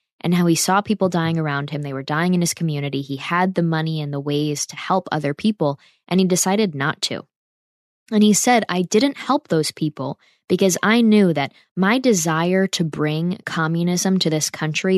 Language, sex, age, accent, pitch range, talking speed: English, female, 20-39, American, 155-200 Hz, 200 wpm